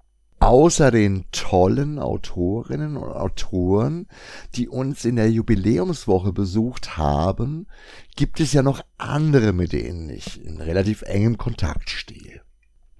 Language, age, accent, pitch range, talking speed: German, 60-79, German, 90-125 Hz, 120 wpm